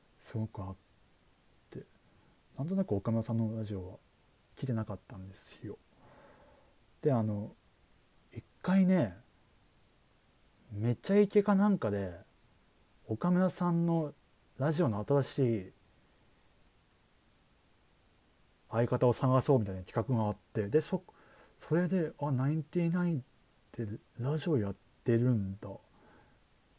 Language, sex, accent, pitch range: Japanese, male, native, 105-150 Hz